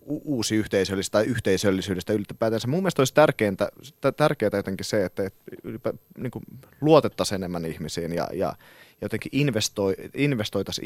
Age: 30-49